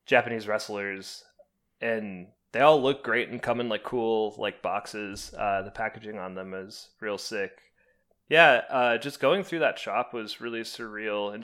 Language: English